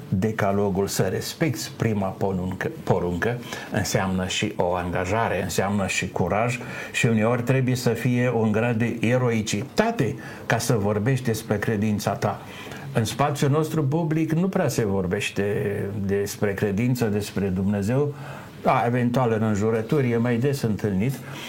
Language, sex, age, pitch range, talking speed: Romanian, male, 60-79, 105-145 Hz, 135 wpm